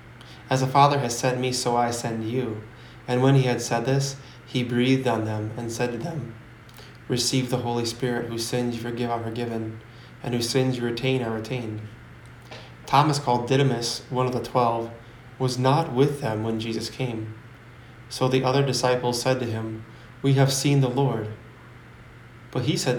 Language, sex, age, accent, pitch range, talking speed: English, male, 20-39, American, 115-130 Hz, 185 wpm